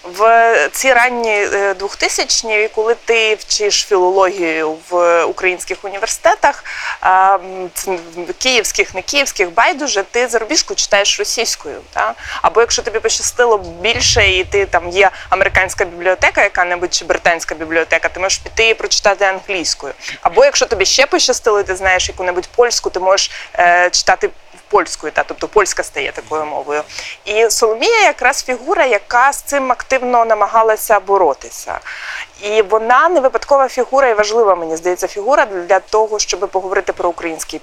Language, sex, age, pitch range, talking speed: Ukrainian, female, 20-39, 185-245 Hz, 135 wpm